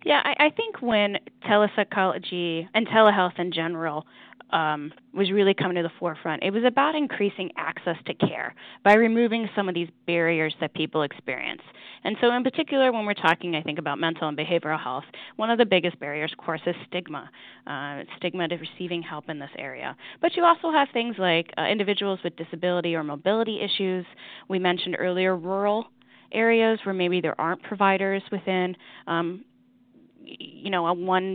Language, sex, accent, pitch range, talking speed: English, female, American, 170-205 Hz, 175 wpm